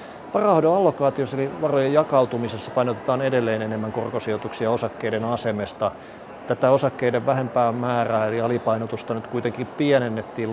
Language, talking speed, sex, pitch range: Finnish, 115 wpm, male, 110-125 Hz